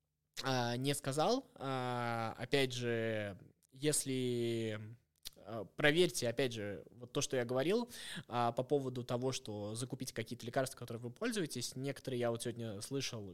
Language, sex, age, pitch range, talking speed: Russian, male, 20-39, 115-140 Hz, 125 wpm